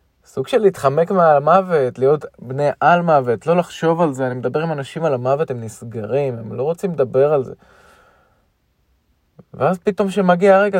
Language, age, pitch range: Hebrew, 20-39, 115-160 Hz